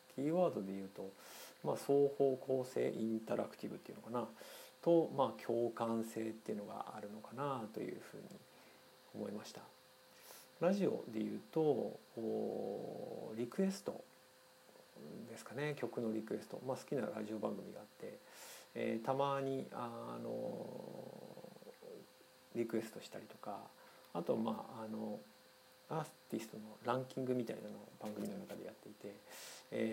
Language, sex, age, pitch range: Japanese, male, 40-59, 110-140 Hz